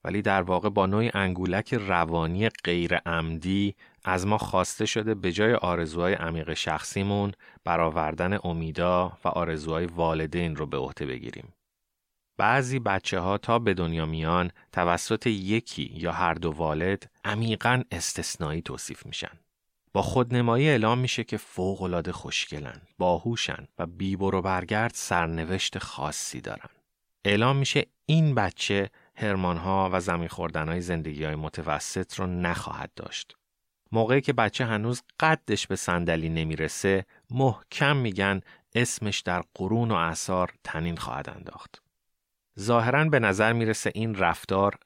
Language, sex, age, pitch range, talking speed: Persian, male, 30-49, 85-110 Hz, 125 wpm